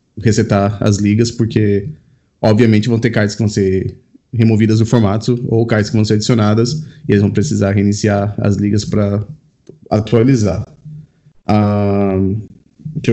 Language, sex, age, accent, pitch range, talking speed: Portuguese, male, 20-39, Brazilian, 110-140 Hz, 140 wpm